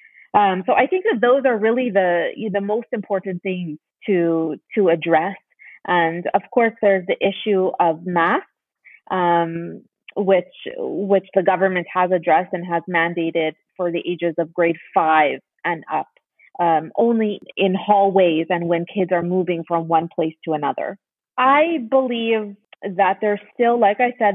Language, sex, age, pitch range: English, female, 30-49, 175-210 Hz